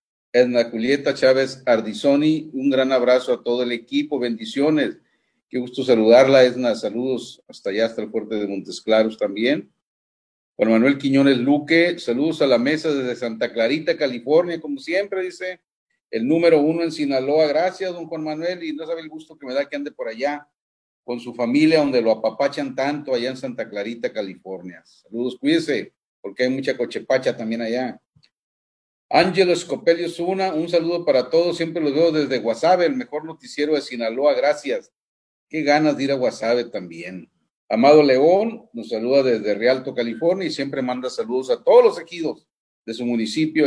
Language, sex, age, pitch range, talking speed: Spanish, male, 40-59, 120-165 Hz, 170 wpm